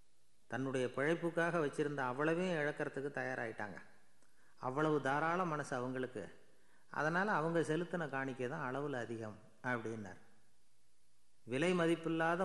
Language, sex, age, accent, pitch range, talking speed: Tamil, male, 30-49, native, 120-155 Hz, 95 wpm